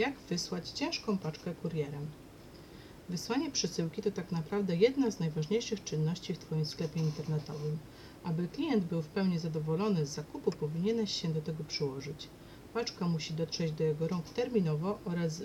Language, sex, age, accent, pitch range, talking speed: Polish, female, 40-59, native, 155-200 Hz, 150 wpm